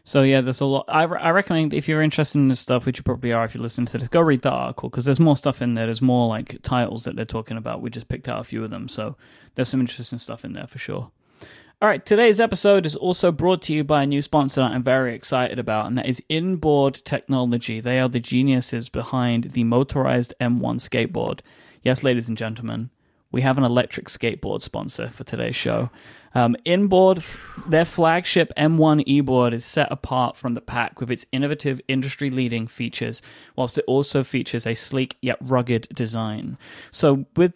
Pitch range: 120-145 Hz